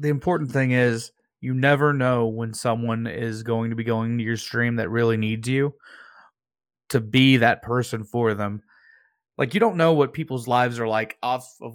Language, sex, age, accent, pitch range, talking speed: English, male, 20-39, American, 115-150 Hz, 195 wpm